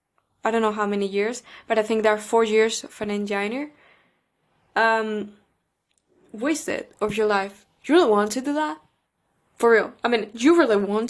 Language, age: English, 10-29